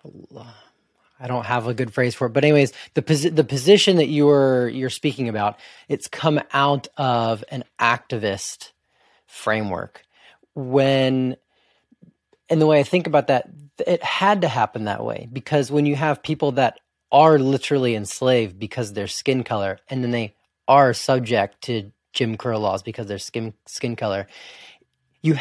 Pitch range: 120-145 Hz